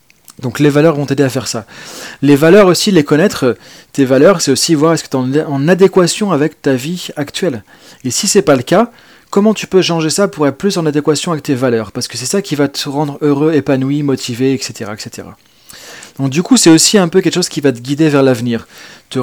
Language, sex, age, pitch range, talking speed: French, male, 30-49, 135-170 Hz, 235 wpm